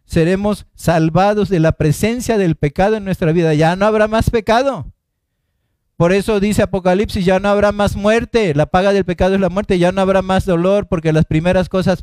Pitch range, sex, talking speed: 125-190 Hz, male, 200 wpm